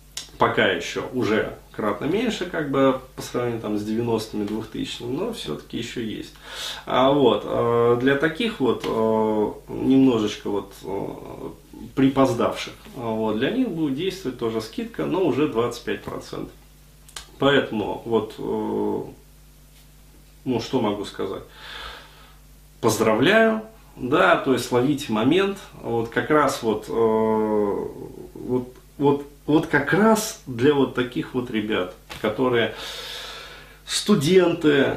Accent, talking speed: native, 120 wpm